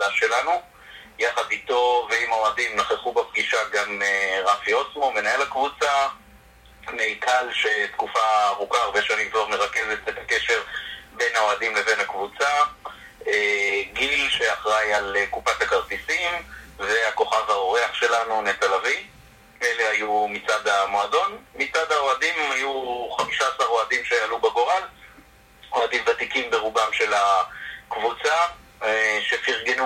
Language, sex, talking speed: Hebrew, male, 105 wpm